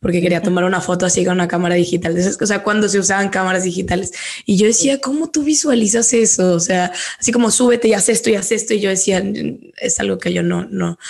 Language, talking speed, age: Spanish, 240 wpm, 20-39